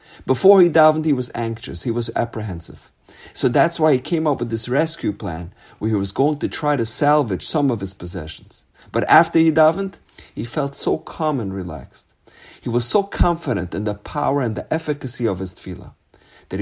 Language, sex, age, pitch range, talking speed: English, male, 50-69, 100-145 Hz, 200 wpm